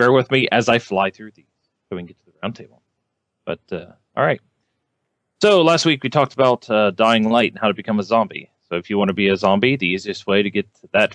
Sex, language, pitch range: male, English, 100-120 Hz